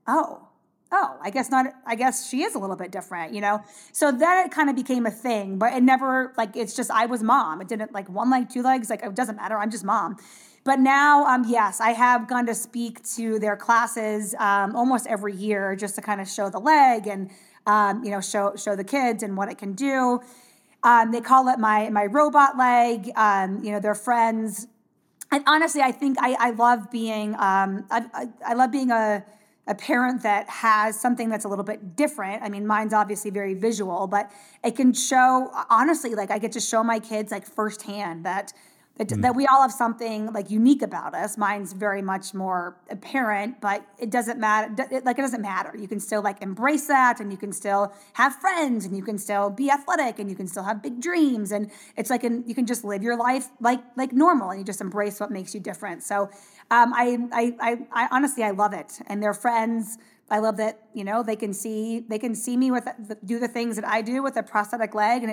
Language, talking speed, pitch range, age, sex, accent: English, 230 wpm, 205-245 Hz, 20-39, female, American